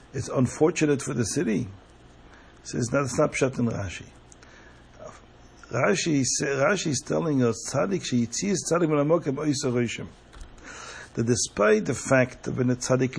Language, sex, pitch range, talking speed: English, male, 120-150 Hz, 105 wpm